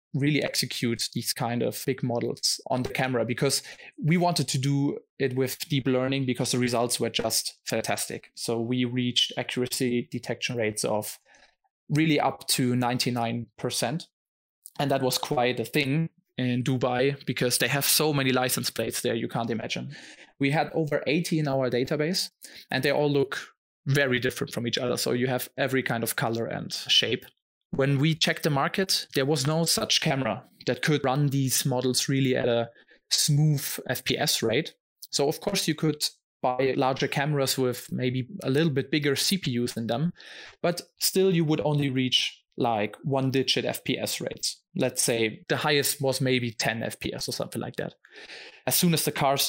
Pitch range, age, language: 125-150 Hz, 20-39, English